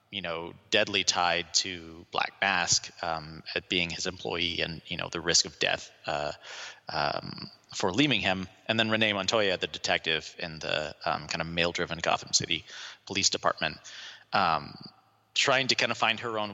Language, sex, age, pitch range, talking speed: English, male, 30-49, 90-125 Hz, 180 wpm